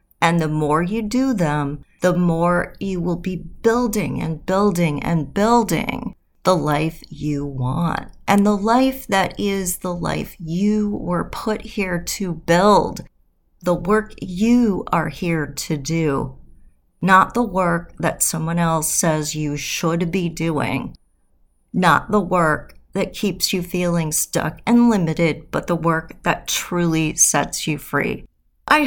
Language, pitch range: English, 165-220 Hz